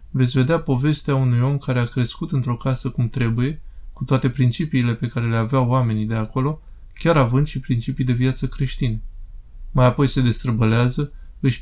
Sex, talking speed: male, 175 wpm